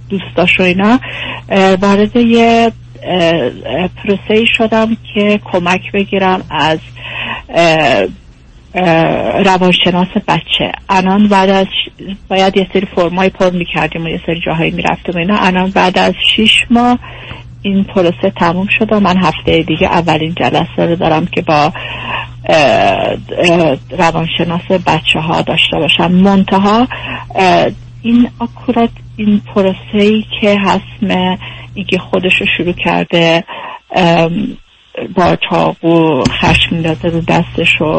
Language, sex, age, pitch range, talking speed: Persian, female, 50-69, 165-200 Hz, 110 wpm